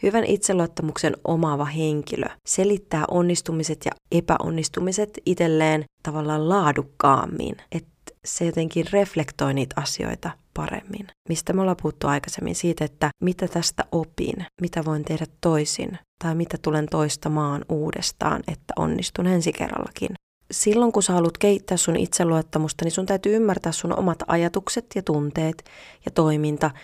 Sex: female